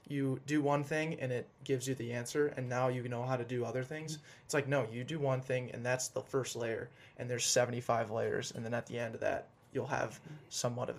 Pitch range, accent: 125-140 Hz, American